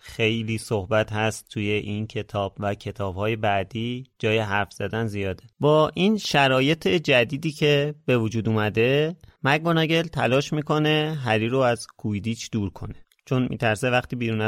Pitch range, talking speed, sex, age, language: 105-140 Hz, 140 wpm, male, 30-49, Persian